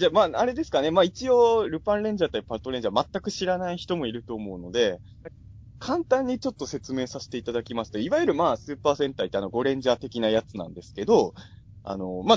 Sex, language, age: male, Japanese, 20-39